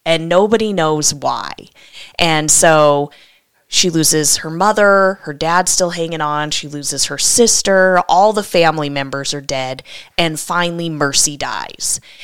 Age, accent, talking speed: 20-39, American, 140 wpm